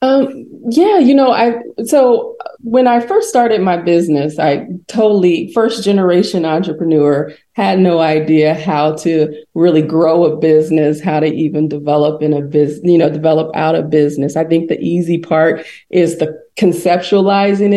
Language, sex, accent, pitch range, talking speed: English, female, American, 155-185 Hz, 160 wpm